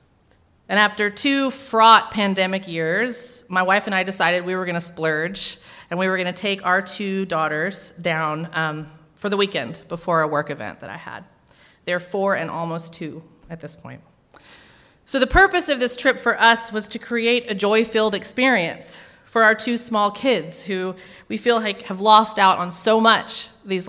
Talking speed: 190 wpm